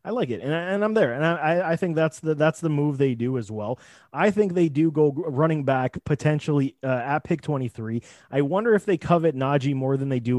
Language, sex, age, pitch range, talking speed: English, male, 30-49, 135-175 Hz, 250 wpm